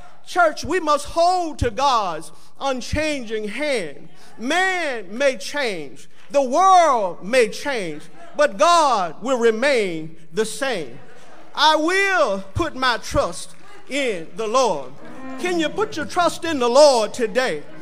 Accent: American